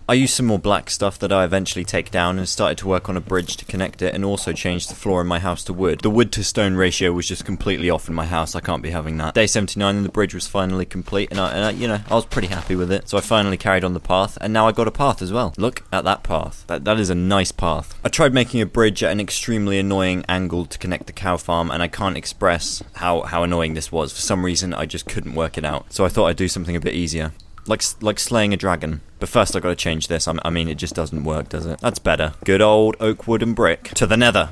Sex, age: male, 20-39